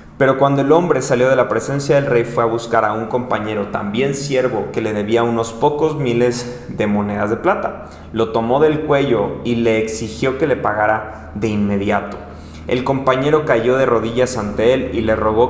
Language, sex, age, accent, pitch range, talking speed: Spanish, male, 30-49, Mexican, 110-130 Hz, 195 wpm